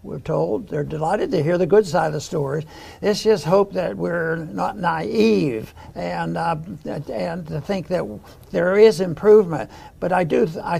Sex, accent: male, American